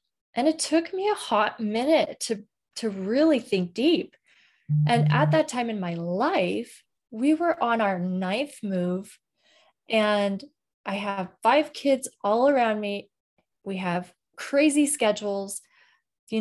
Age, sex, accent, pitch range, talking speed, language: 20-39, female, American, 190-265 Hz, 140 wpm, English